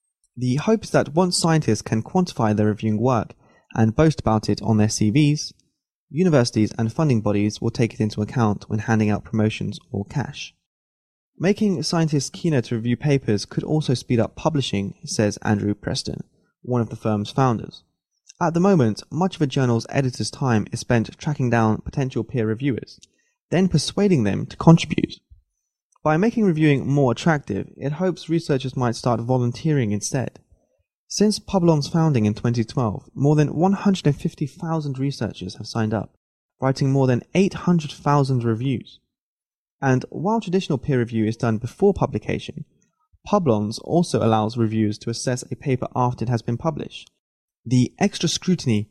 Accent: British